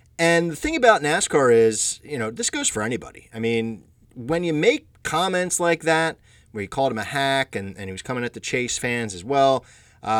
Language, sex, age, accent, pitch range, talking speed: English, male, 30-49, American, 115-160 Hz, 225 wpm